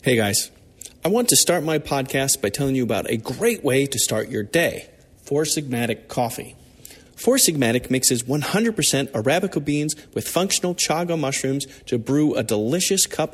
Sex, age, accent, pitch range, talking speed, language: male, 40-59, American, 125-195 Hz, 165 wpm, English